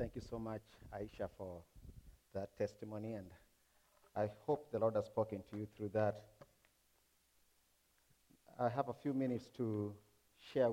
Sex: male